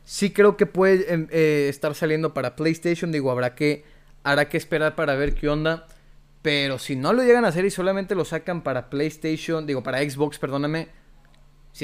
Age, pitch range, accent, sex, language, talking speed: 30-49, 130-170 Hz, Mexican, male, Spanish, 195 wpm